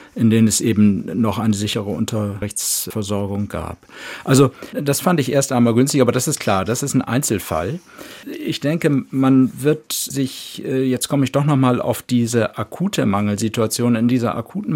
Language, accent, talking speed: German, German, 165 wpm